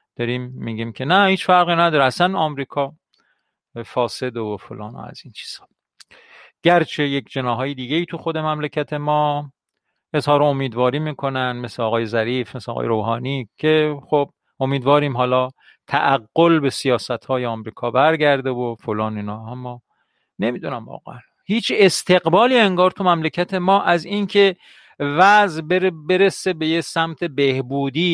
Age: 40-59